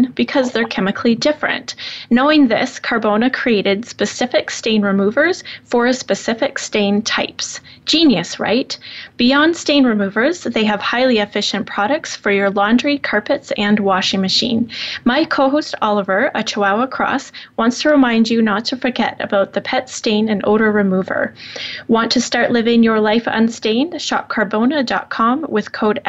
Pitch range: 210-270 Hz